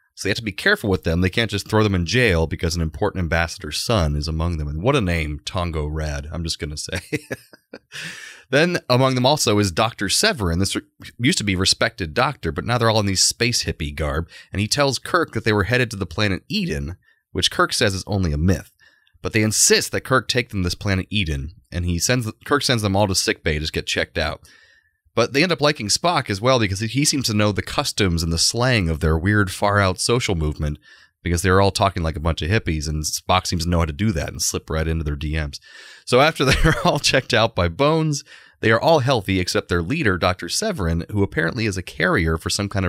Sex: male